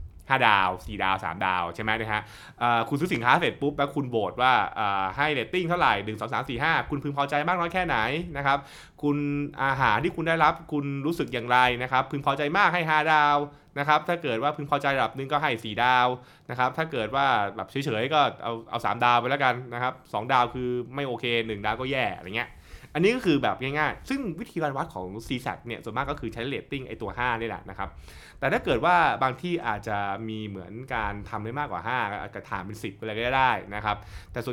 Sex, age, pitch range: male, 20-39, 110-145 Hz